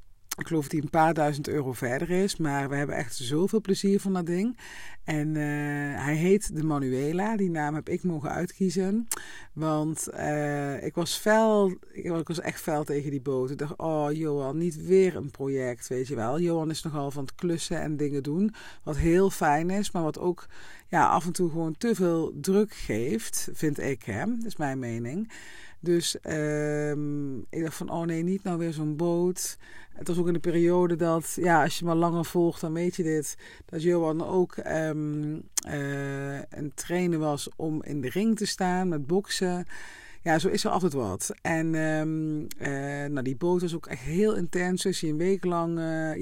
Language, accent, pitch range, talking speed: Dutch, Dutch, 140-180 Hz, 200 wpm